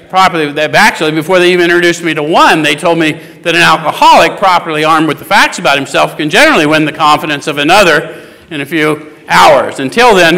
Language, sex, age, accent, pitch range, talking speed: English, male, 50-69, American, 150-170 Hz, 195 wpm